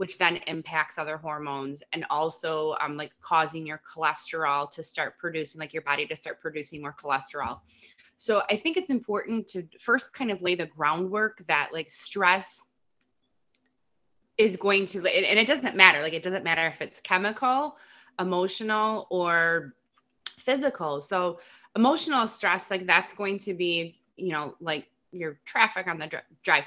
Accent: American